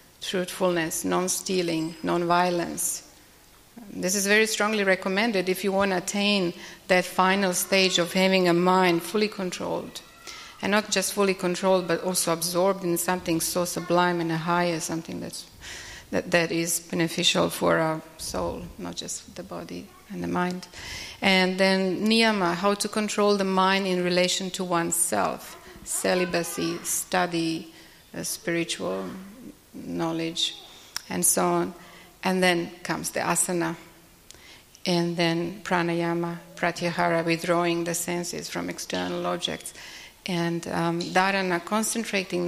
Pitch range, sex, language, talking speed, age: 170-190 Hz, female, Italian, 130 wpm, 30-49